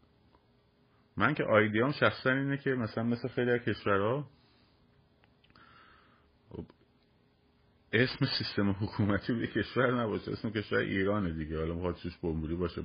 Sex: male